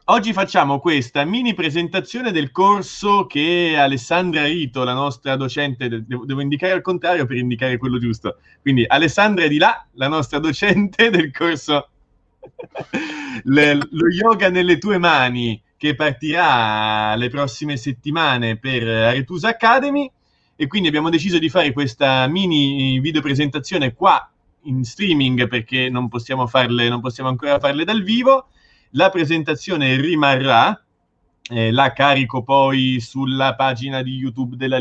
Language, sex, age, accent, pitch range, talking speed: Italian, male, 30-49, native, 130-170 Hz, 140 wpm